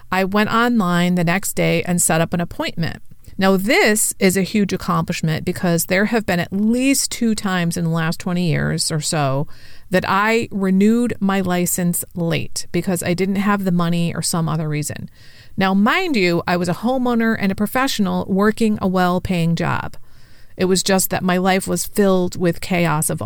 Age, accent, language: 40-59, American, English